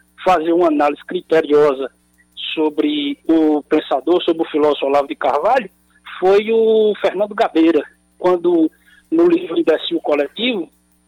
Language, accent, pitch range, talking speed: Portuguese, Brazilian, 160-265 Hz, 125 wpm